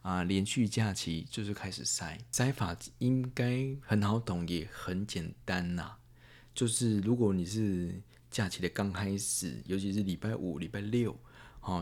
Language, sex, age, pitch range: Chinese, male, 20-39, 95-120 Hz